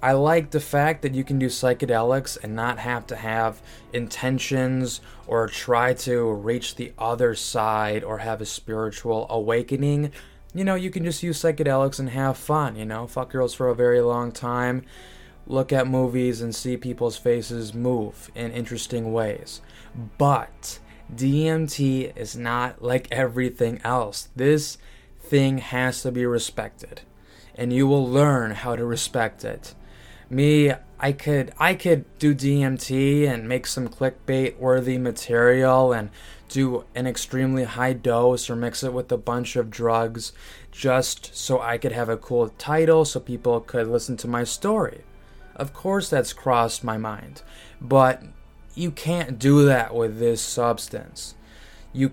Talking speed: 155 wpm